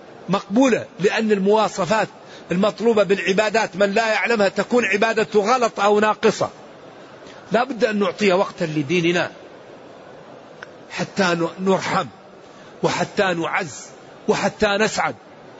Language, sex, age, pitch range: Arabic, male, 50-69, 190-230 Hz